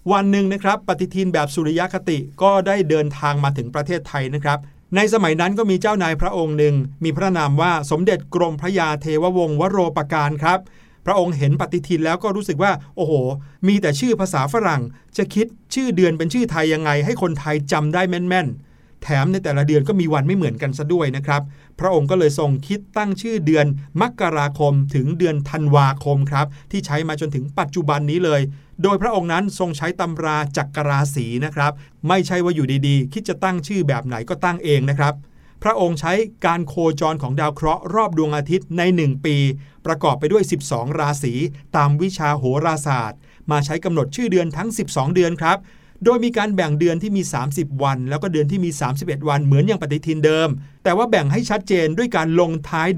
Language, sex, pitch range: Thai, male, 145-185 Hz